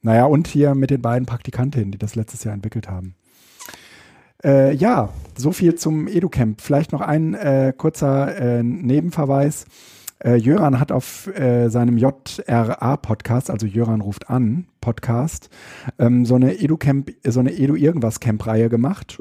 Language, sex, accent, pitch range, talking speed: German, male, German, 120-150 Hz, 145 wpm